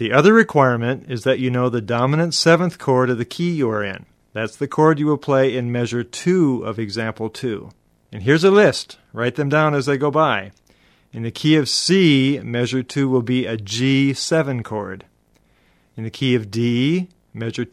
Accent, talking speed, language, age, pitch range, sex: American, 195 wpm, English, 40-59, 120-145 Hz, male